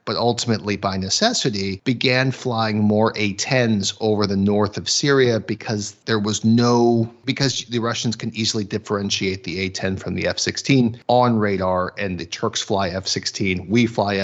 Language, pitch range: English, 100-125 Hz